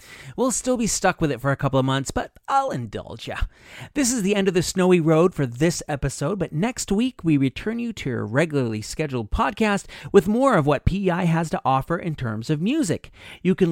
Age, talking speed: 40-59, 225 wpm